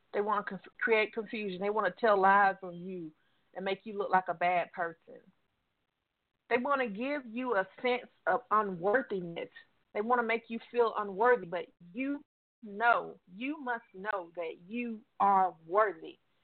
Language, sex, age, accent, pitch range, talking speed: English, female, 40-59, American, 190-245 Hz, 170 wpm